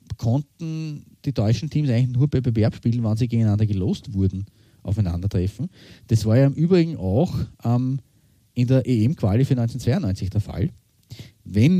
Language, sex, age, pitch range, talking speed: German, male, 30-49, 100-125 Hz, 155 wpm